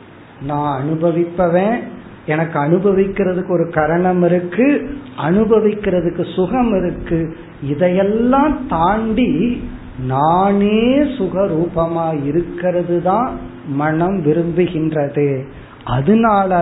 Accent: native